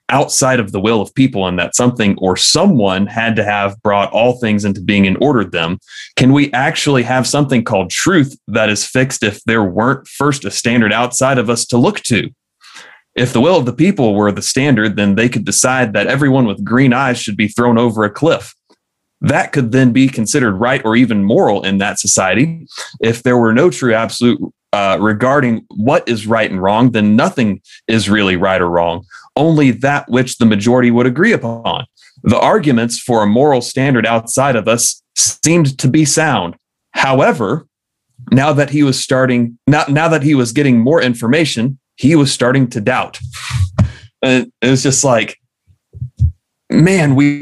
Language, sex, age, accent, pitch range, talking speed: English, male, 30-49, American, 105-130 Hz, 185 wpm